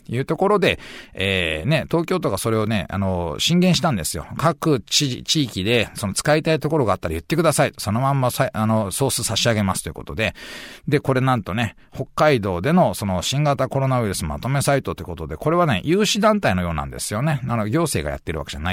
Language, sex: Japanese, male